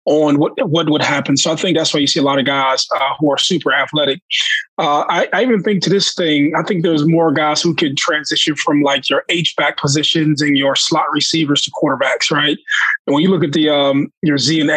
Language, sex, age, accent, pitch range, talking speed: English, male, 20-39, American, 145-165 Hz, 240 wpm